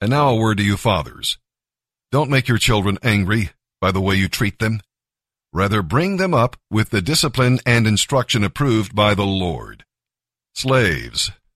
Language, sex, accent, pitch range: English, male, American, 100-130 Hz